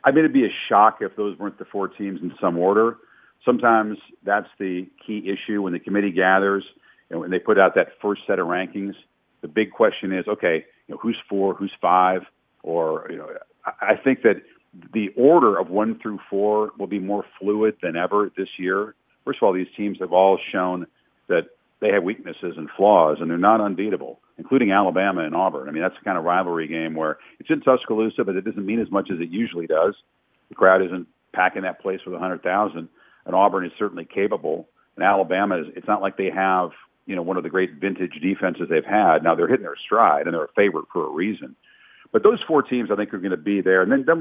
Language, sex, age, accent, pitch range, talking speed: English, male, 50-69, American, 95-110 Hz, 225 wpm